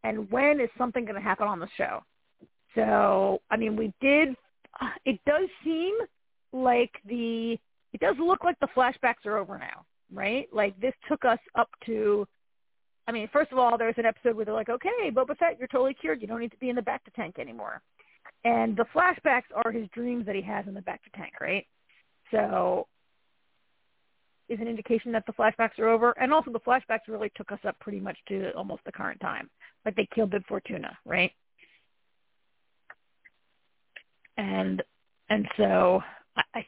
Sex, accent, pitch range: female, American, 220-295 Hz